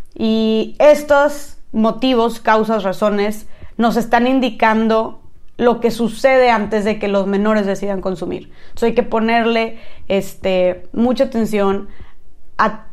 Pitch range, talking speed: 205-250 Hz, 115 wpm